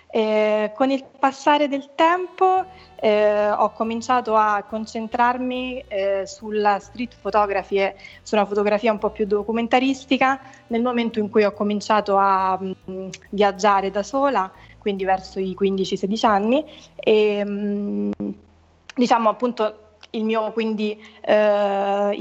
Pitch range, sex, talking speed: 190-220 Hz, female, 125 wpm